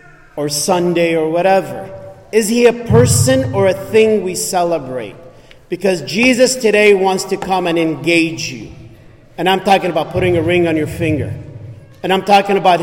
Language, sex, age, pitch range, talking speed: English, male, 40-59, 140-195 Hz, 170 wpm